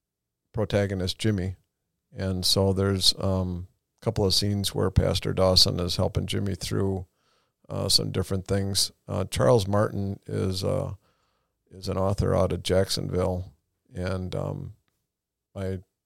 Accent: American